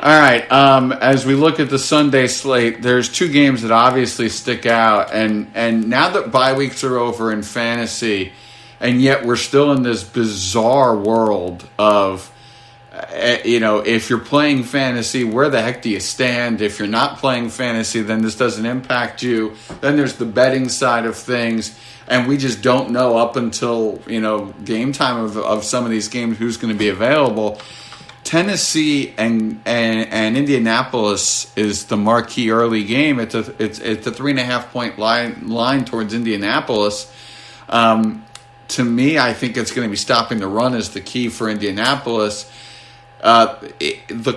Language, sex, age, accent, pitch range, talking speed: English, male, 50-69, American, 110-130 Hz, 175 wpm